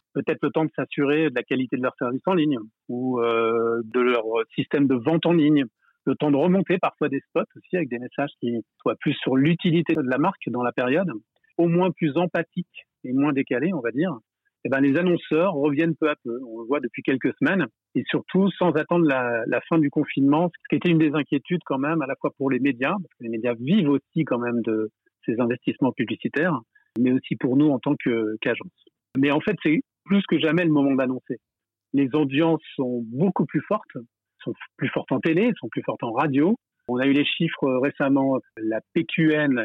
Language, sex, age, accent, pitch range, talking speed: French, male, 40-59, French, 125-165 Hz, 220 wpm